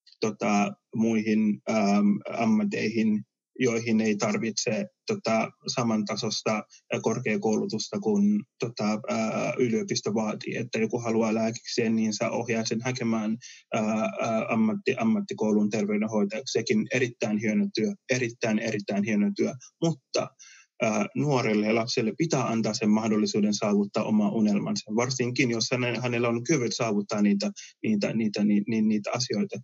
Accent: native